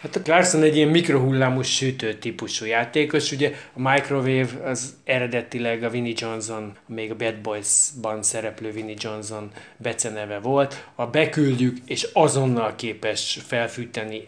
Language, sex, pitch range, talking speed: Hungarian, male, 115-140 Hz, 135 wpm